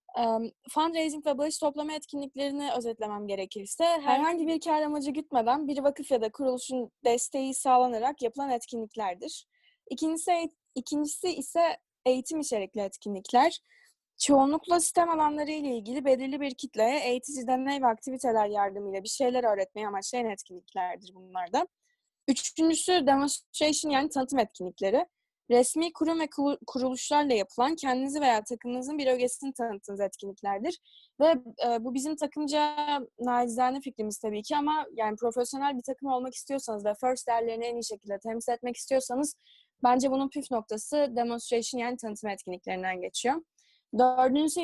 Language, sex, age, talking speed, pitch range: Turkish, female, 20-39, 130 wpm, 230-295 Hz